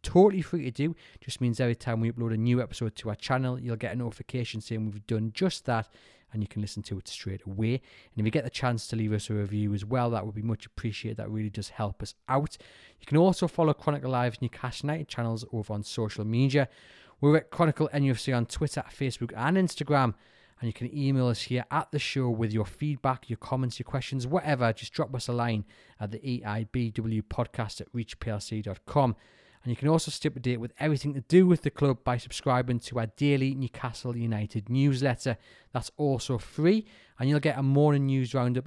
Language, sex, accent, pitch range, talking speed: English, male, British, 110-140 Hz, 215 wpm